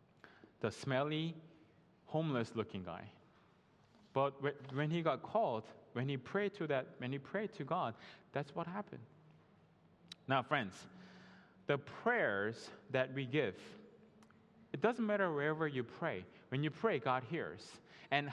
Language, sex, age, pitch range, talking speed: English, male, 20-39, 130-190 Hz, 135 wpm